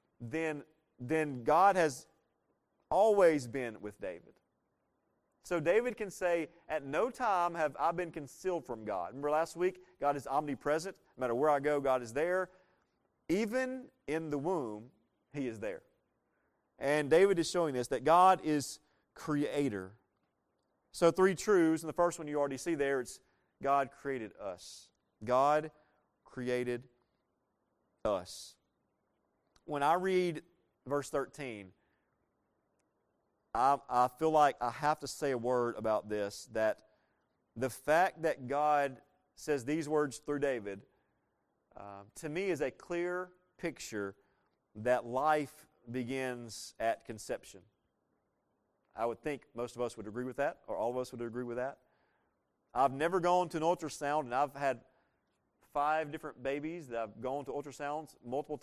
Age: 40-59